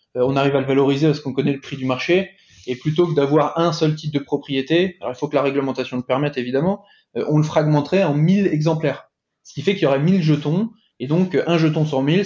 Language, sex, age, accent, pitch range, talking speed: French, male, 20-39, French, 135-160 Hz, 245 wpm